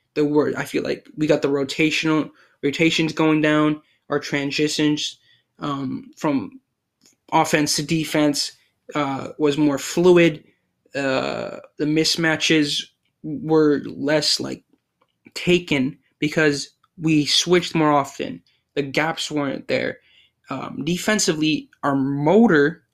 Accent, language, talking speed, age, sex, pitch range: American, English, 110 wpm, 20-39, male, 145-170 Hz